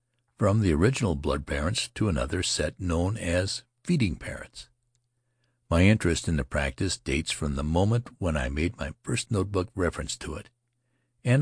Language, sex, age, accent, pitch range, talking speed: English, male, 60-79, American, 80-120 Hz, 150 wpm